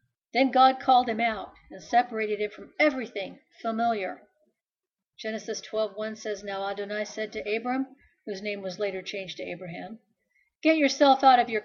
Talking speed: 160 wpm